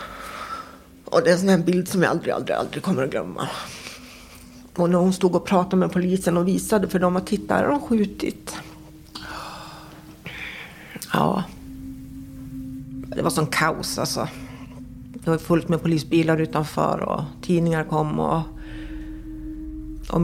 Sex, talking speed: female, 140 wpm